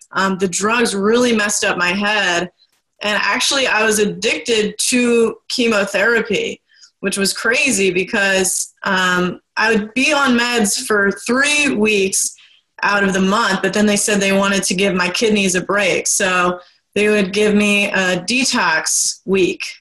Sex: female